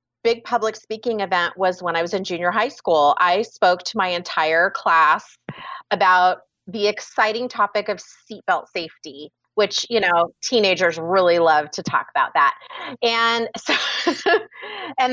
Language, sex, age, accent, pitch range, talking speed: English, female, 30-49, American, 185-255 Hz, 150 wpm